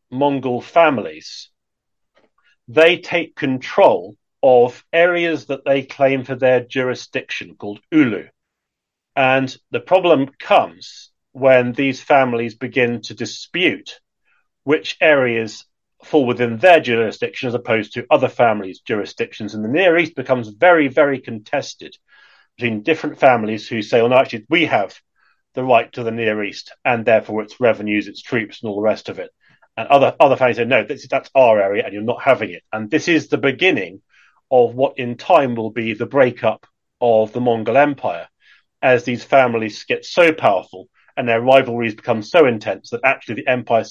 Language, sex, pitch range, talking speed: English, male, 115-140 Hz, 165 wpm